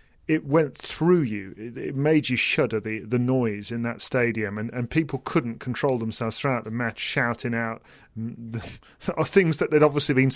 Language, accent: English, British